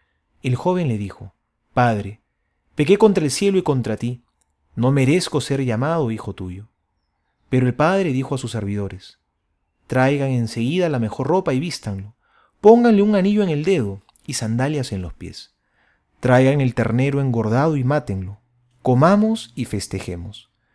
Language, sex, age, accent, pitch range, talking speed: Spanish, male, 30-49, Argentinian, 105-160 Hz, 150 wpm